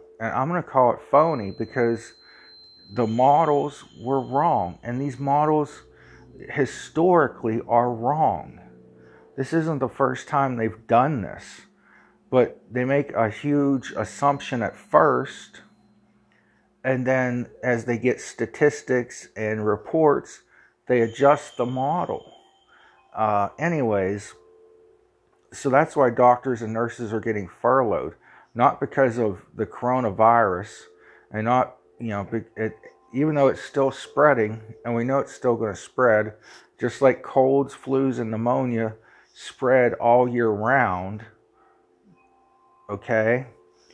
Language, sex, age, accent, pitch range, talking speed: English, male, 50-69, American, 110-140 Hz, 125 wpm